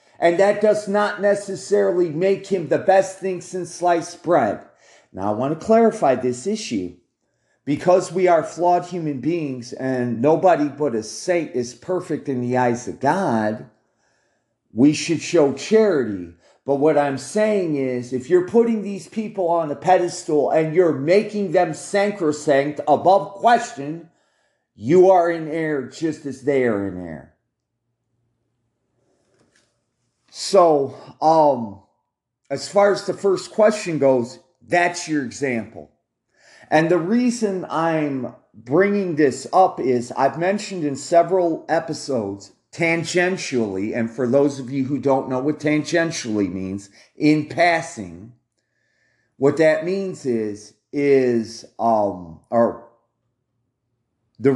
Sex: male